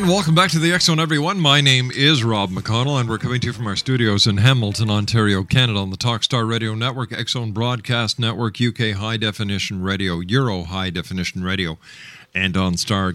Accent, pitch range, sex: American, 105-140 Hz, male